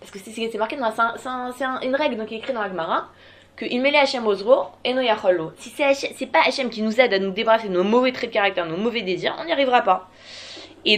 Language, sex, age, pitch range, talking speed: French, female, 20-39, 175-240 Hz, 290 wpm